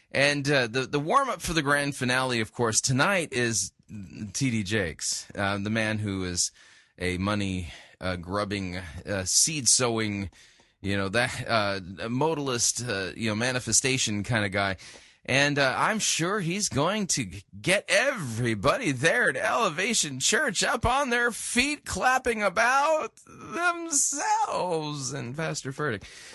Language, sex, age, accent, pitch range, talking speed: English, male, 30-49, American, 100-145 Hz, 145 wpm